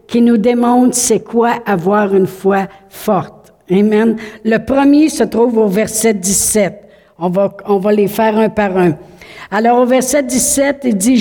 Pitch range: 215-275 Hz